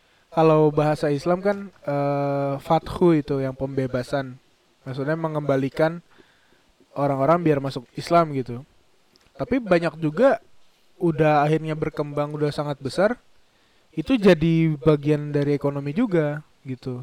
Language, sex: Indonesian, male